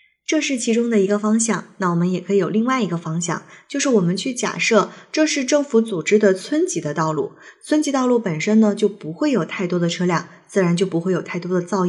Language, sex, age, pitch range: Chinese, female, 20-39, 180-230 Hz